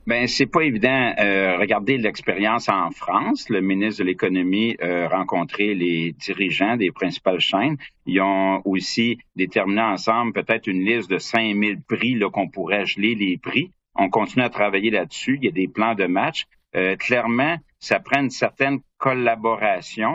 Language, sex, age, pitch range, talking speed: French, male, 50-69, 95-120 Hz, 170 wpm